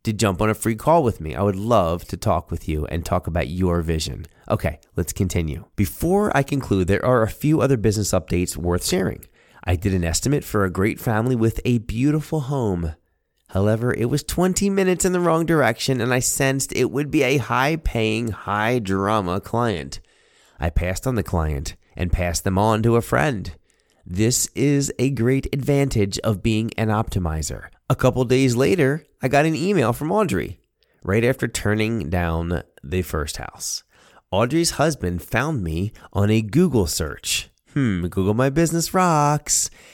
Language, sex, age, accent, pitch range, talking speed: English, male, 30-49, American, 90-135 Hz, 175 wpm